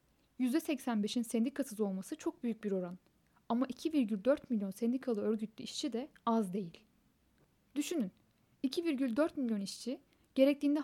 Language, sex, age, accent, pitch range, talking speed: Turkish, female, 10-29, native, 215-275 Hz, 115 wpm